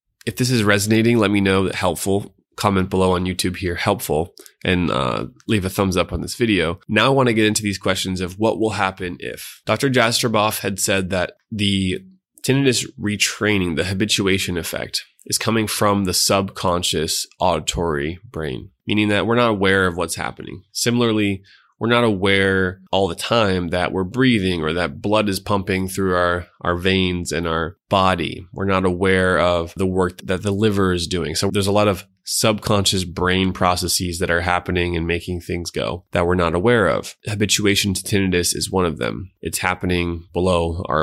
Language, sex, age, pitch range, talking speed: English, male, 20-39, 90-105 Hz, 185 wpm